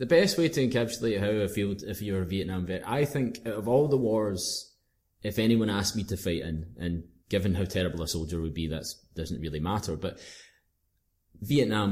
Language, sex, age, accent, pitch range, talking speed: English, male, 20-39, British, 85-105 Hz, 205 wpm